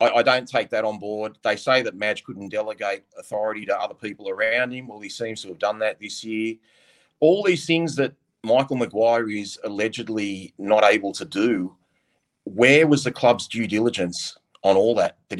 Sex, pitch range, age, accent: male, 105-130 Hz, 30-49, Australian